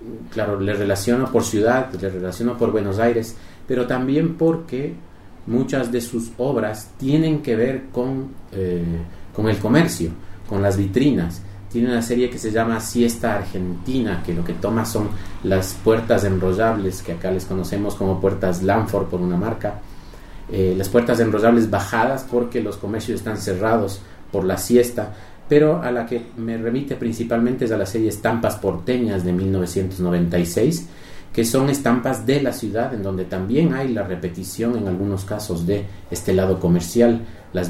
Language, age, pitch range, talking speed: Spanish, 40-59, 95-115 Hz, 160 wpm